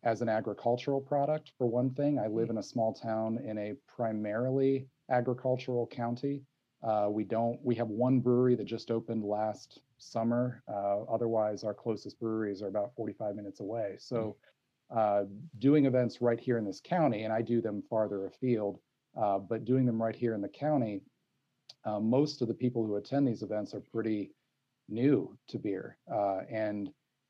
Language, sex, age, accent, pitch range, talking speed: English, male, 40-59, American, 105-125 Hz, 175 wpm